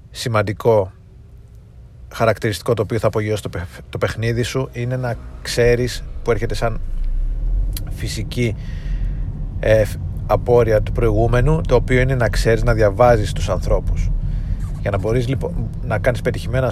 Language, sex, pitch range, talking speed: Greek, male, 95-115 Hz, 135 wpm